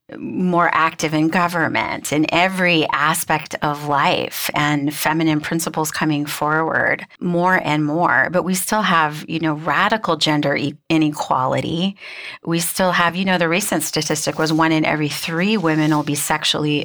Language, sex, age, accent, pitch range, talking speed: English, female, 30-49, American, 150-175 Hz, 155 wpm